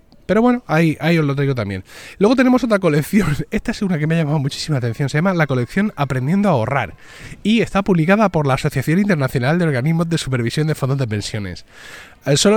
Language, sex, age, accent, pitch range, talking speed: Spanish, male, 20-39, Spanish, 135-195 Hz, 210 wpm